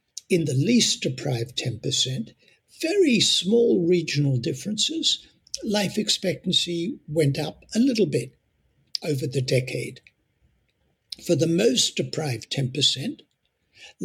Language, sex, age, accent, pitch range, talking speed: English, male, 60-79, British, 135-230 Hz, 105 wpm